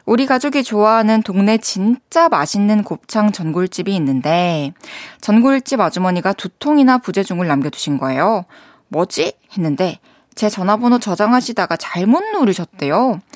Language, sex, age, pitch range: Korean, female, 20-39, 170-255 Hz